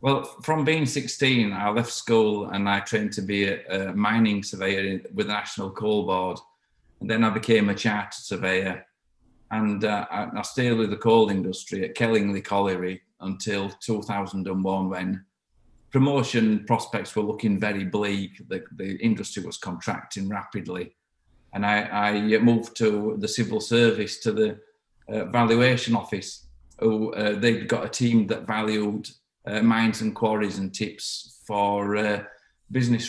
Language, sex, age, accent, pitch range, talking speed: English, male, 40-59, British, 100-115 Hz, 150 wpm